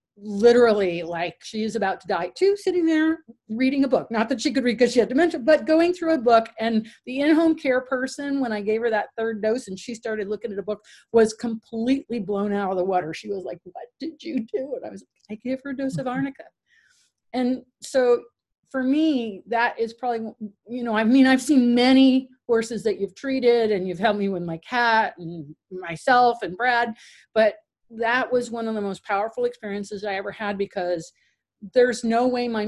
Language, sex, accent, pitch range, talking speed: English, female, American, 200-250 Hz, 215 wpm